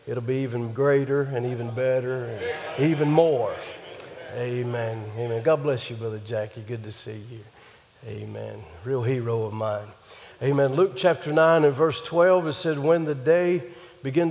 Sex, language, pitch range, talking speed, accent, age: male, English, 125-155 Hz, 165 wpm, American, 50-69